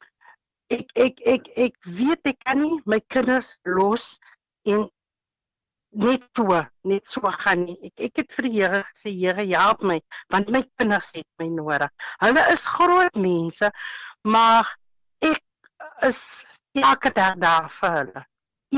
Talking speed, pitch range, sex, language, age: 150 wpm, 190-255 Hz, female, English, 60-79